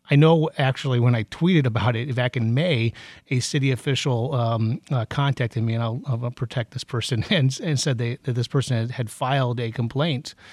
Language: English